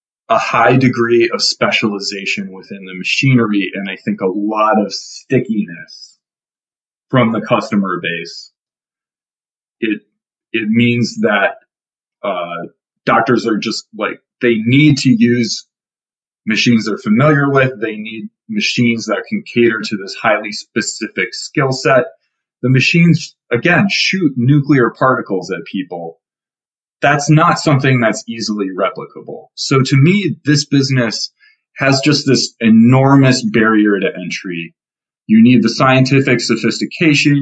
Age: 30-49